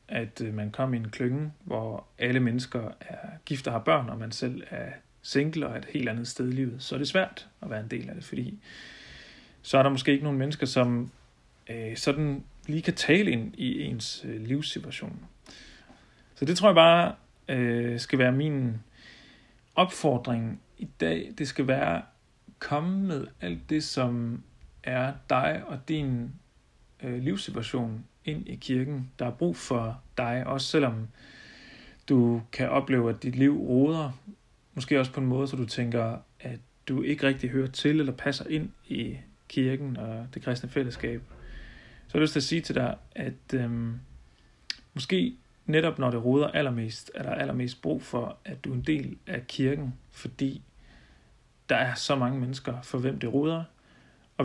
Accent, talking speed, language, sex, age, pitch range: native, 175 wpm, Danish, male, 40-59, 120-145 Hz